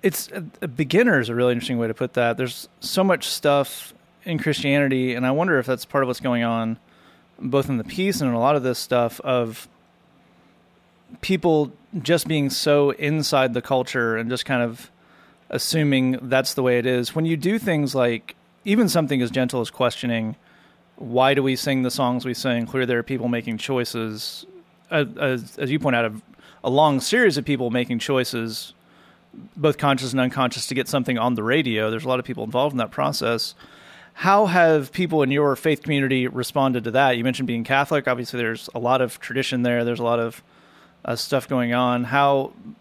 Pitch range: 125-145 Hz